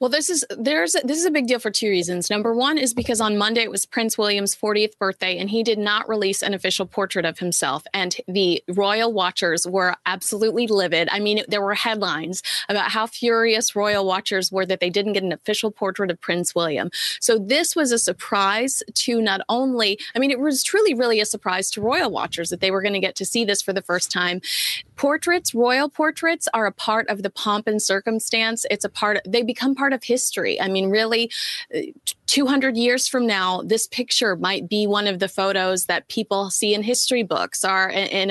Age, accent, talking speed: 30-49, American, 215 wpm